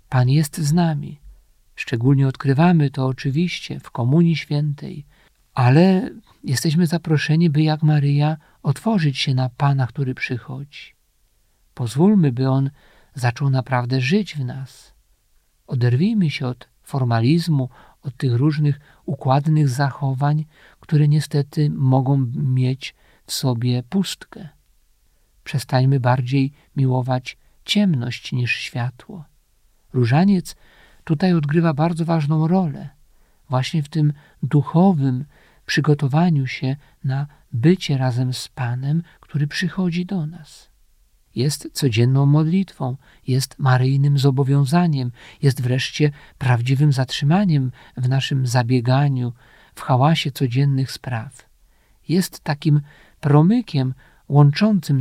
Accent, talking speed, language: native, 105 wpm, Polish